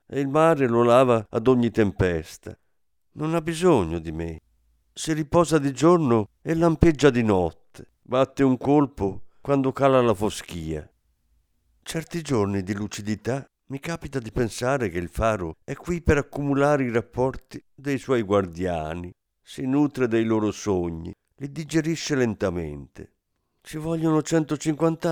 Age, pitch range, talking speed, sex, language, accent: 50-69, 90-140 Hz, 140 wpm, male, Italian, native